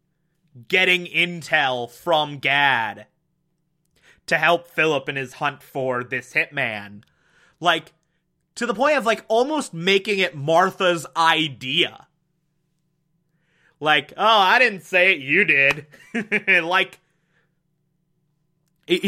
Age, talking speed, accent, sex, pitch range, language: 30-49, 105 wpm, American, male, 140-170 Hz, English